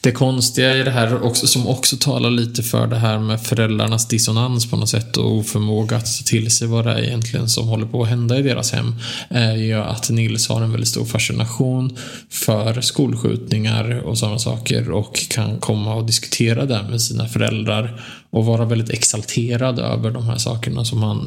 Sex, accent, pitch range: male, Norwegian, 115-130 Hz